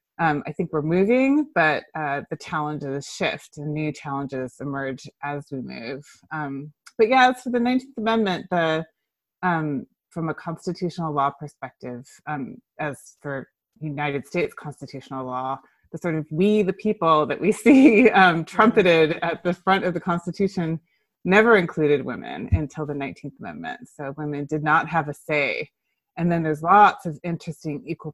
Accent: American